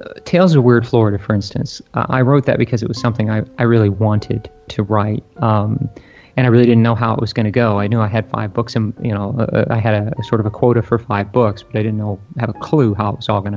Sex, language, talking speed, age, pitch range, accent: male, English, 285 wpm, 40-59, 110-125 Hz, American